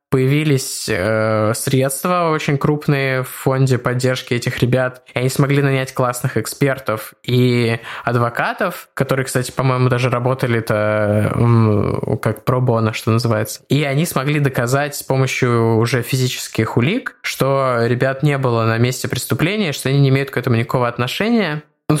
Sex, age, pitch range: male, 20-39, 125-140 Hz